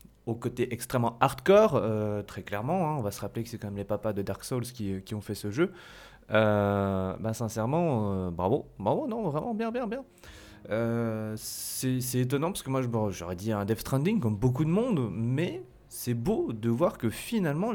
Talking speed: 205 wpm